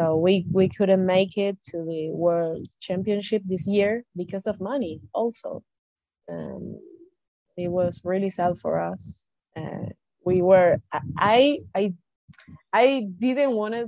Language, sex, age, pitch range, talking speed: English, female, 20-39, 165-200 Hz, 135 wpm